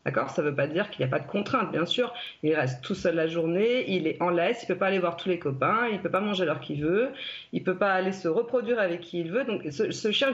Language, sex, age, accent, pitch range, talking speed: French, female, 40-59, French, 160-205 Hz, 330 wpm